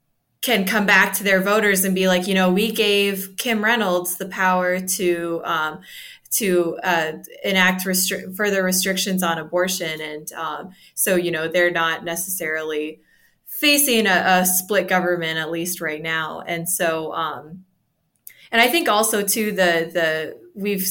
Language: English